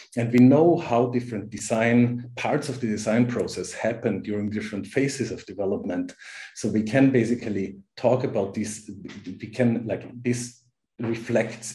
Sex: male